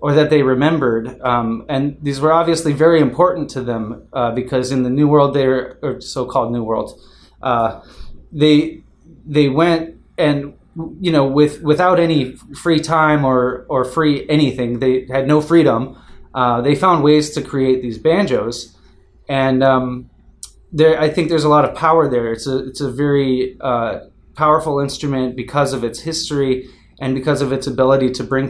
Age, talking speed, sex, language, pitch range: 20-39, 175 wpm, male, English, 125-155 Hz